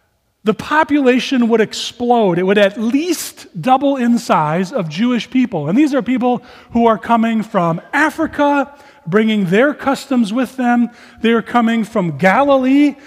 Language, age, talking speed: English, 30-49, 150 wpm